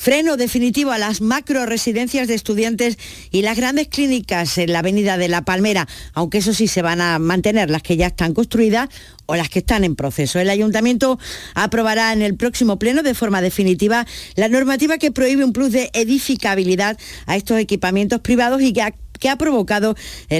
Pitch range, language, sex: 180-240 Hz, Spanish, female